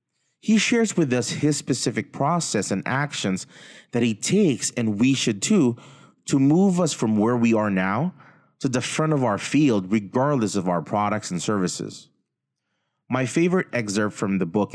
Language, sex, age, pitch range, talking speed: English, male, 30-49, 100-155 Hz, 170 wpm